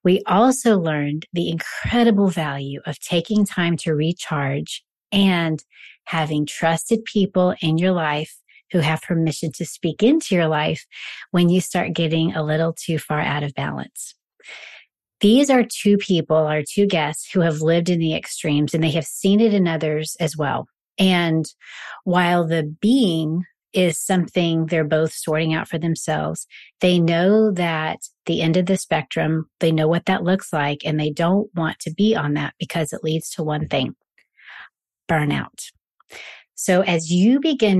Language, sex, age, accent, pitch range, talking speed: English, female, 30-49, American, 155-190 Hz, 165 wpm